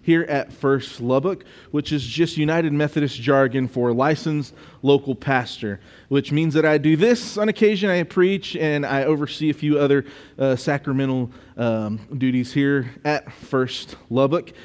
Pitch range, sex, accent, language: 135-160 Hz, male, American, English